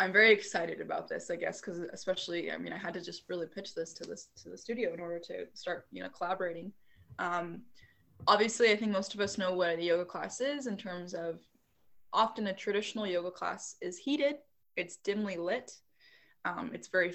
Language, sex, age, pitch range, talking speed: English, female, 20-39, 180-230 Hz, 205 wpm